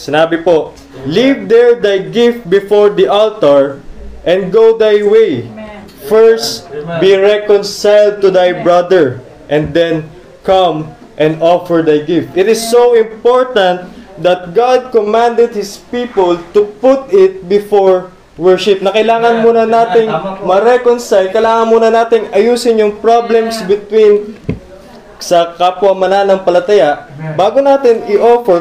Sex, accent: male, native